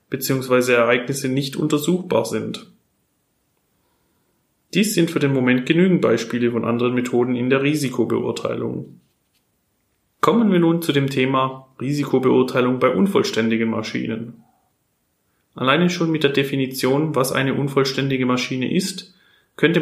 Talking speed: 120 wpm